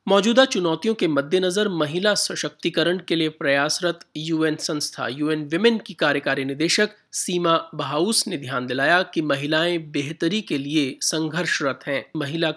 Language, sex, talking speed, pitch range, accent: Hindi, male, 145 wpm, 150-185 Hz, native